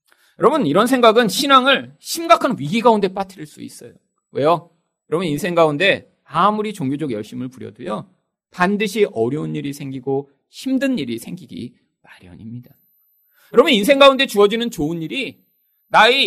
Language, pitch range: Korean, 170-255 Hz